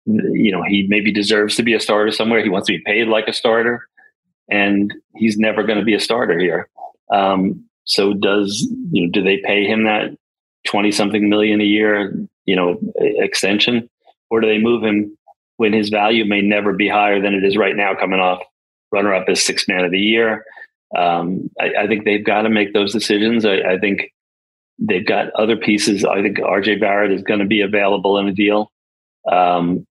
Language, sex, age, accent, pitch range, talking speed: English, male, 40-59, American, 100-115 Hz, 200 wpm